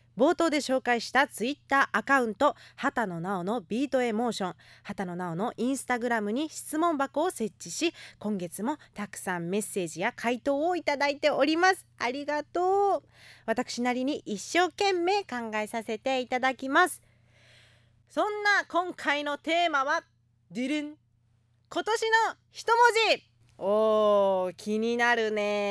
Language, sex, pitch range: Japanese, female, 170-285 Hz